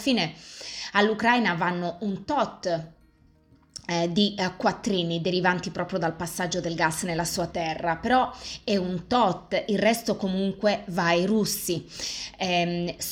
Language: Italian